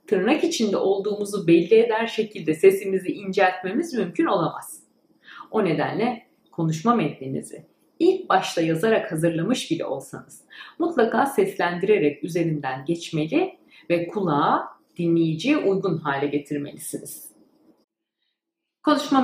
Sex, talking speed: female, 95 wpm